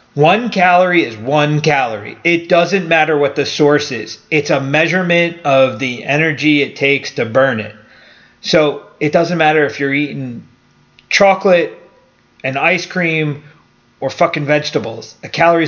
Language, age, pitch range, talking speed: English, 30-49, 130-160 Hz, 150 wpm